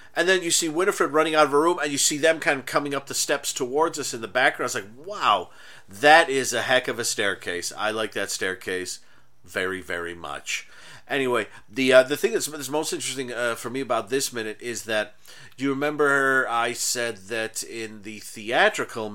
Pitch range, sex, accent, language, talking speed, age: 105-135 Hz, male, American, English, 215 wpm, 40-59